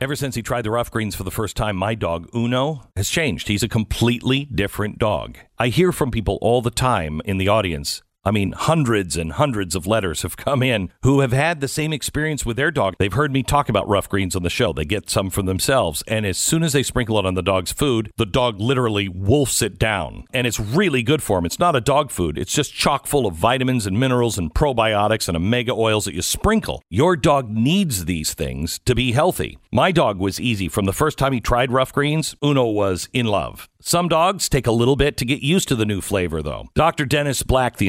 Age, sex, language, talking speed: 50-69, male, English, 240 wpm